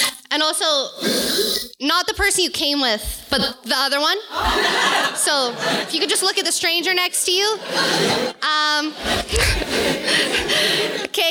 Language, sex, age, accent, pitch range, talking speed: English, female, 20-39, American, 270-335 Hz, 140 wpm